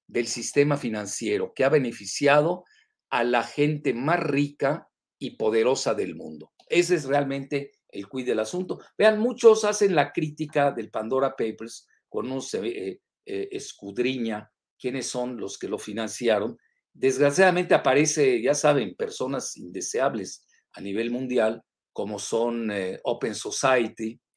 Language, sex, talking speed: Spanish, male, 135 wpm